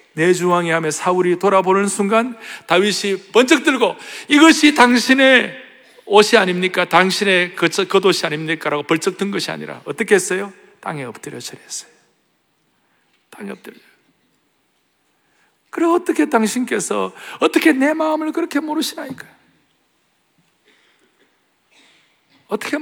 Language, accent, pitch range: Korean, native, 160-240 Hz